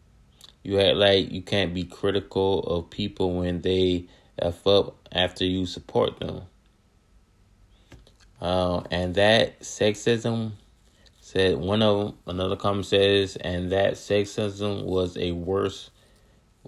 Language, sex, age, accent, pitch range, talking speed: English, male, 20-39, American, 90-110 Hz, 120 wpm